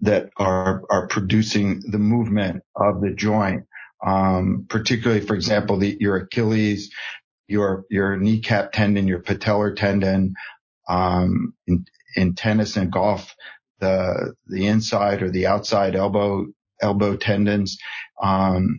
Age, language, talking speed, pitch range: 50-69, English, 125 wpm, 95-110 Hz